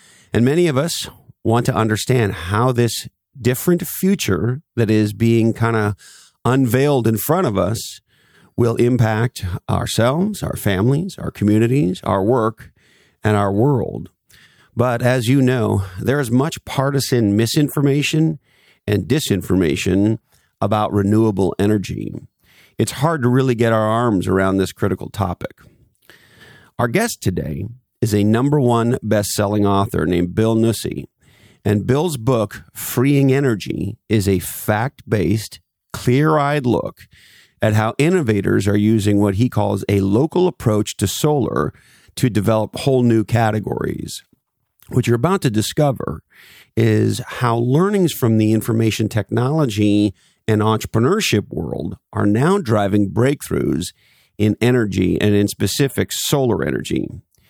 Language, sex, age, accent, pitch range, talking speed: English, male, 40-59, American, 105-130 Hz, 130 wpm